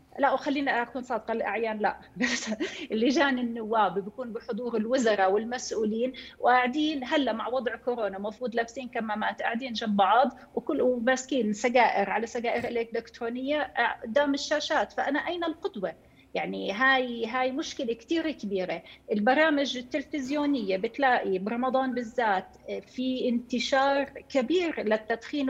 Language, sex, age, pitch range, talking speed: Arabic, female, 30-49, 230-285 Hz, 115 wpm